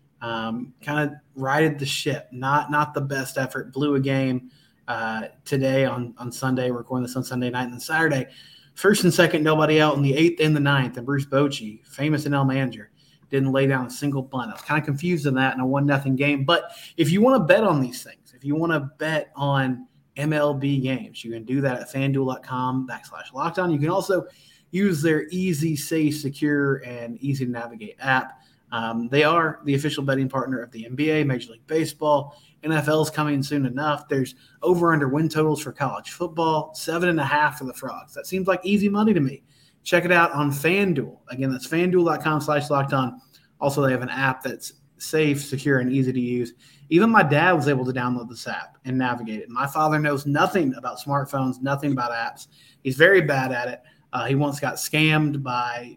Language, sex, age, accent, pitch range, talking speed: English, male, 20-39, American, 130-155 Hz, 205 wpm